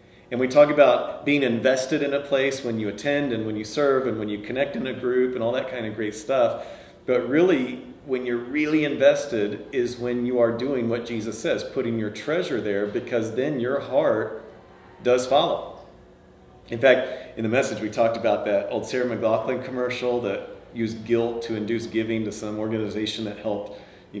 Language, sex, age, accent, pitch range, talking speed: English, male, 40-59, American, 105-125 Hz, 195 wpm